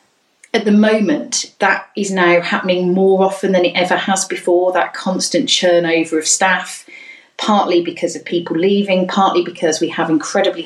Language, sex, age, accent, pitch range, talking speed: English, female, 40-59, British, 165-195 Hz, 165 wpm